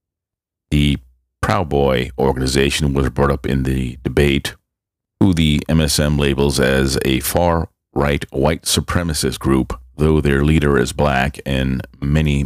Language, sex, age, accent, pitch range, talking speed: English, male, 40-59, American, 65-80 Hz, 125 wpm